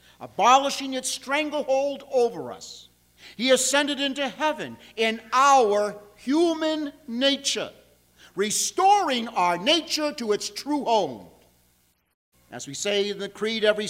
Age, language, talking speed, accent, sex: 50-69, English, 115 wpm, American, male